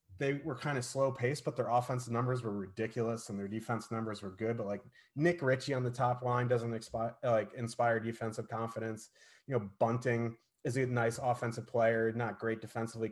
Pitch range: 110-140 Hz